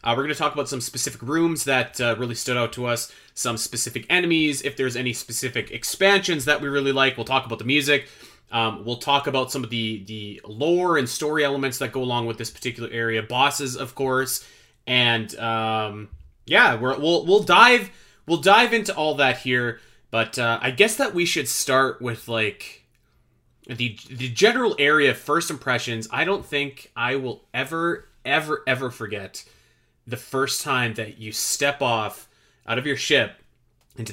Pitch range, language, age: 115-140 Hz, English, 30-49